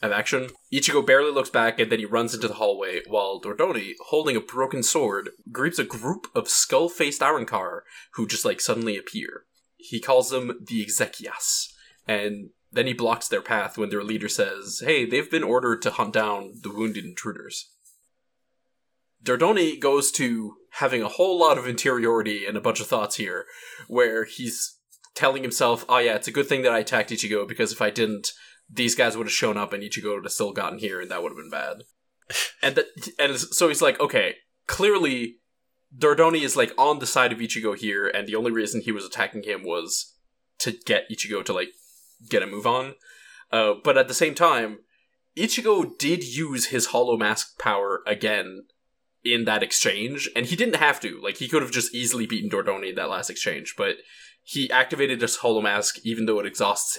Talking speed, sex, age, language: 195 wpm, male, 20-39, English